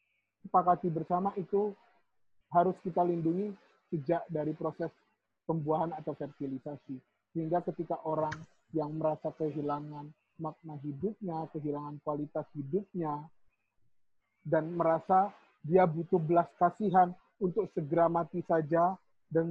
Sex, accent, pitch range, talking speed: male, native, 155-185 Hz, 105 wpm